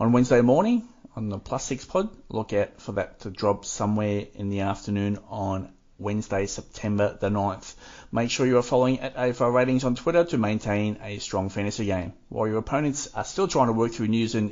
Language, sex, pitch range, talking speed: English, male, 105-130 Hz, 205 wpm